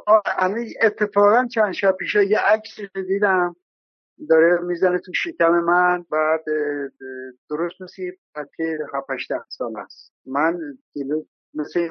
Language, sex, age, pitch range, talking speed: Persian, male, 60-79, 140-210 Hz, 115 wpm